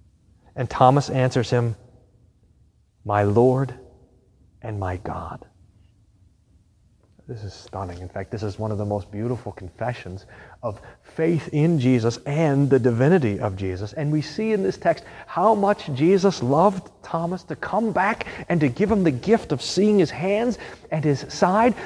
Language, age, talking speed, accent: English, 30-49, 160 wpm, American